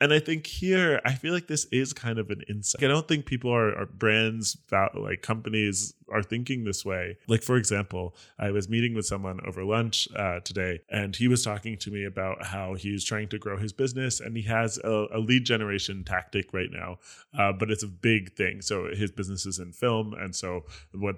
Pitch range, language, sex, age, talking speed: 95-120 Hz, English, male, 20-39, 220 wpm